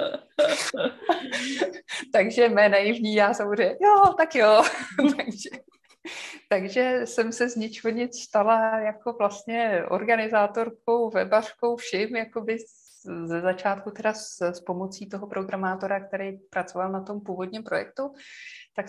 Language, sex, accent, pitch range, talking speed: Czech, female, native, 160-225 Hz, 115 wpm